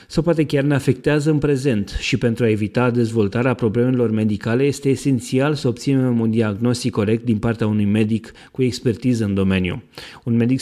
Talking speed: 175 wpm